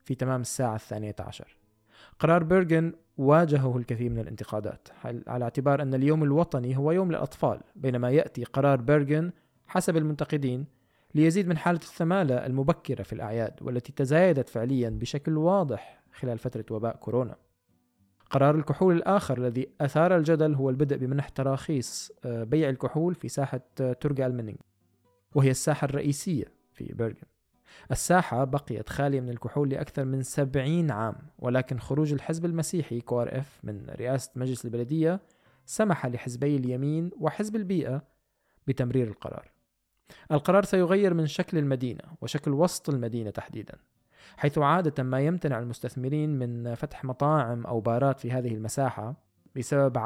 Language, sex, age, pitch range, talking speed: Arabic, male, 20-39, 125-155 Hz, 130 wpm